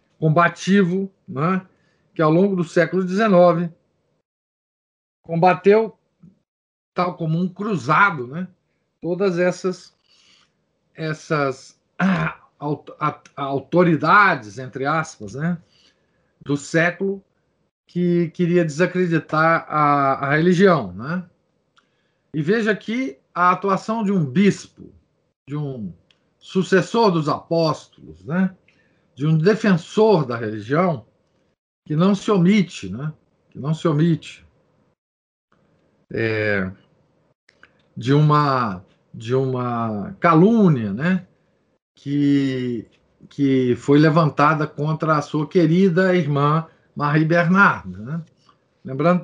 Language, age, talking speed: Portuguese, 50-69, 95 wpm